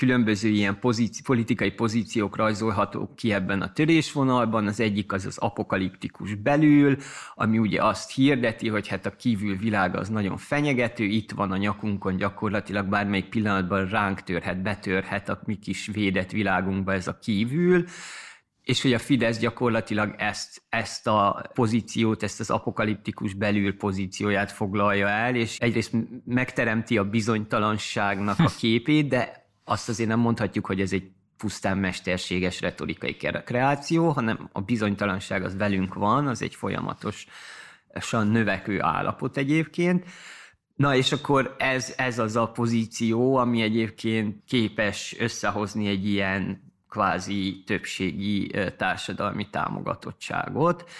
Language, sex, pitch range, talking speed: Hungarian, male, 100-120 Hz, 130 wpm